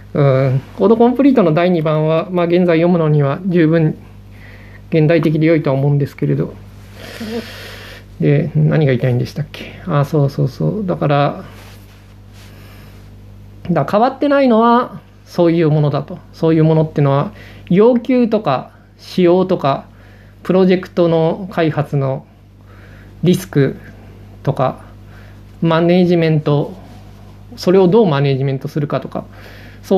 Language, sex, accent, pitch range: Japanese, male, native, 105-175 Hz